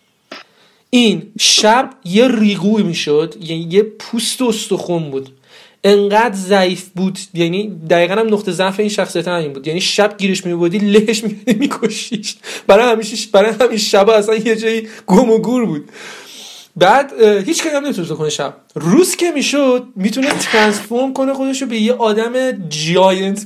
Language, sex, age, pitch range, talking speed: Persian, male, 30-49, 175-220 Hz, 160 wpm